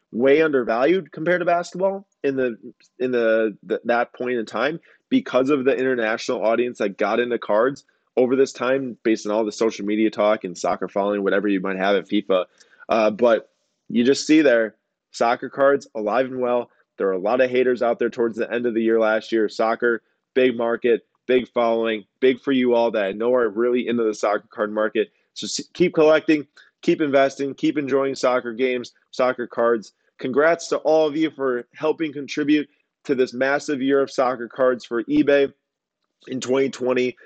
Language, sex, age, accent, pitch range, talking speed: English, male, 20-39, American, 115-135 Hz, 190 wpm